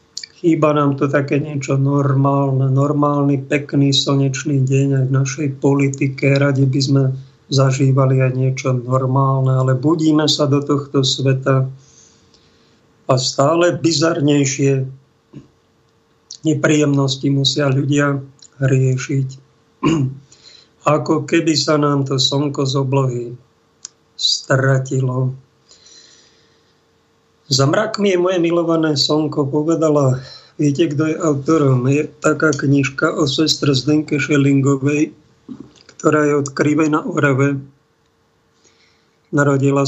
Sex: male